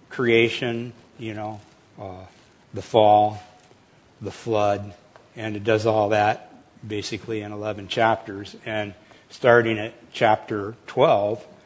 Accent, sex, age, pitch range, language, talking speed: American, male, 60-79, 105-115 Hz, English, 115 wpm